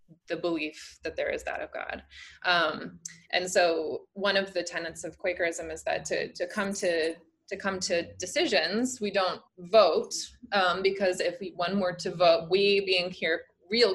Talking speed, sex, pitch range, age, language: 180 wpm, female, 165-200 Hz, 20-39, English